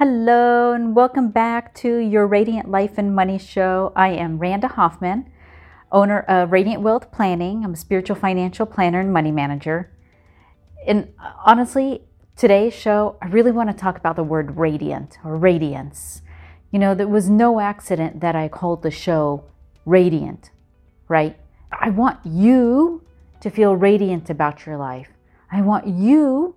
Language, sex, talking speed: English, female, 155 wpm